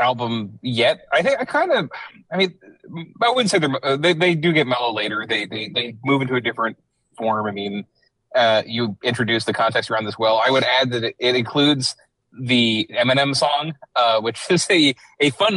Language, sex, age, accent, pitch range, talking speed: English, male, 30-49, American, 115-140 Hz, 195 wpm